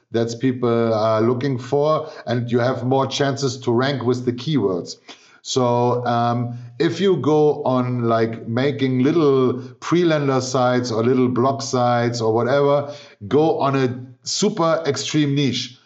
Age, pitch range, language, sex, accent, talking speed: 50-69, 125-150 Hz, English, male, German, 145 wpm